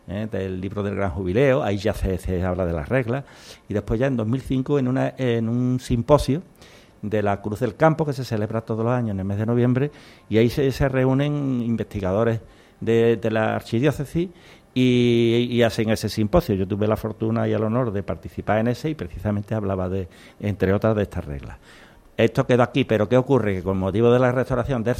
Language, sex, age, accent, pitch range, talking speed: Spanish, male, 60-79, Spanish, 95-125 Hz, 210 wpm